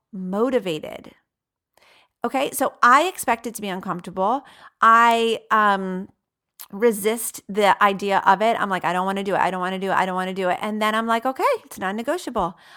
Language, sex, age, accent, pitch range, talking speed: English, female, 40-59, American, 200-285 Hz, 200 wpm